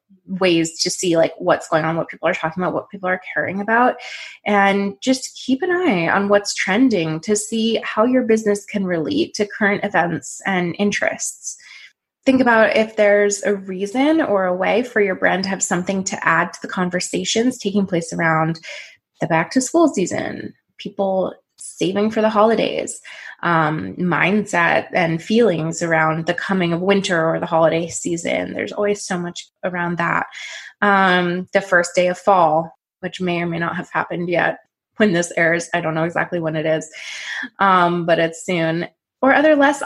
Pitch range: 165-205 Hz